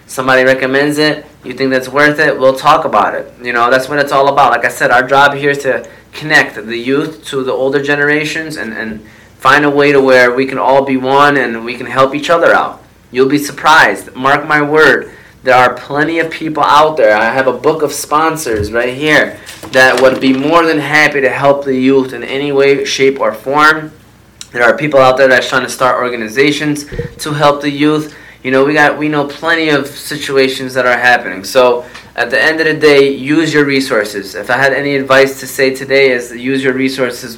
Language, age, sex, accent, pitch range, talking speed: English, 20-39, male, American, 130-145 Hz, 225 wpm